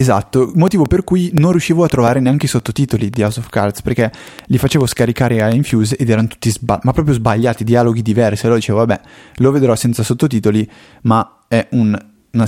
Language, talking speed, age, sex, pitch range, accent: Italian, 190 wpm, 20-39, male, 110-140 Hz, native